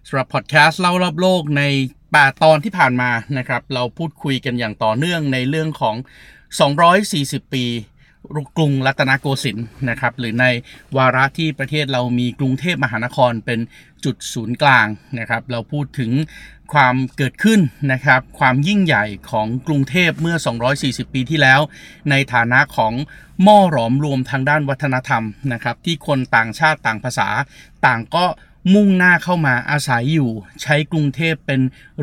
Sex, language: male, Thai